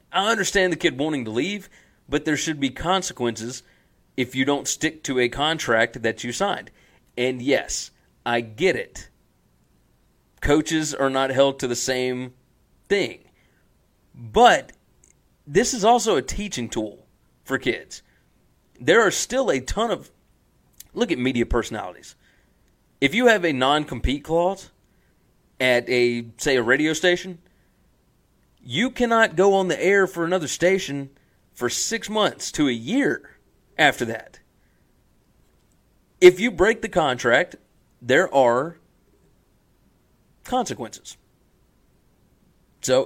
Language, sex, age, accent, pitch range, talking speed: English, male, 40-59, American, 120-180 Hz, 130 wpm